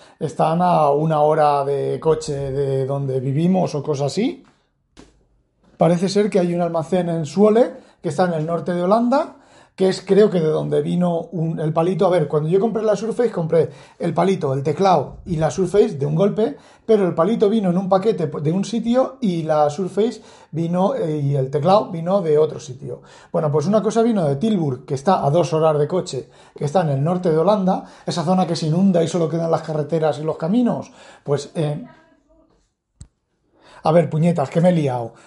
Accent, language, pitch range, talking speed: Spanish, Spanish, 160-210 Hz, 205 wpm